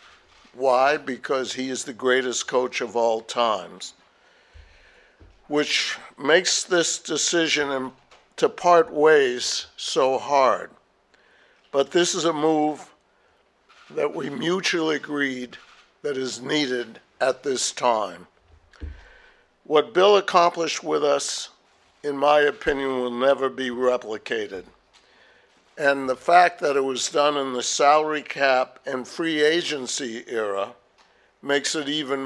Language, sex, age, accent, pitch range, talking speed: English, male, 60-79, American, 125-150 Hz, 120 wpm